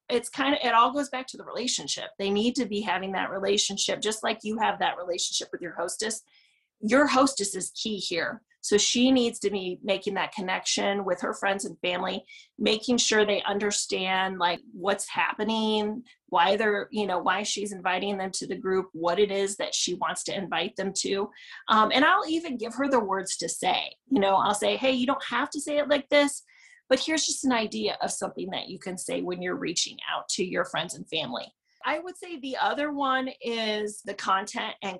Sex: female